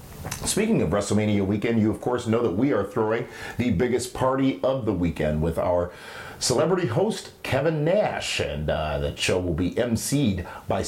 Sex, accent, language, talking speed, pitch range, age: male, American, English, 175 wpm, 95-135 Hz, 40-59